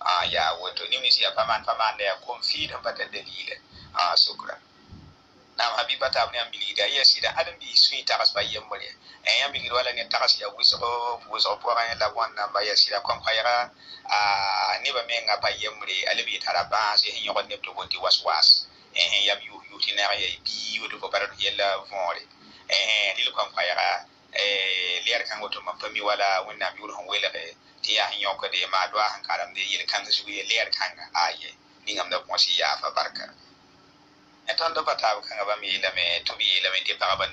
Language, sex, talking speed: French, male, 125 wpm